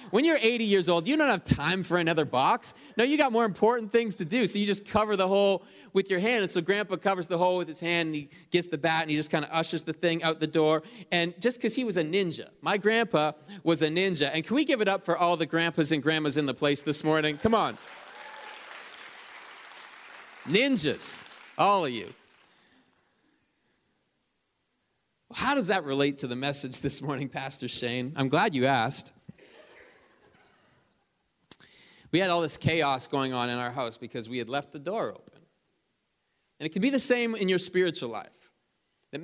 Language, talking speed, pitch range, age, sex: English, 200 wpm, 140-190 Hz, 30-49, male